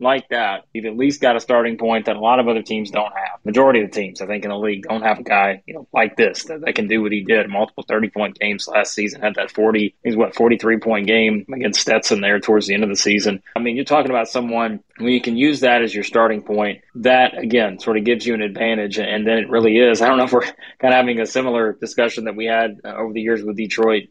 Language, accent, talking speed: English, American, 280 wpm